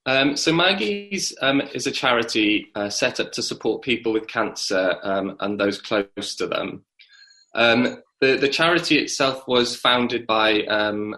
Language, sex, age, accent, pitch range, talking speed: English, male, 20-39, British, 105-135 Hz, 160 wpm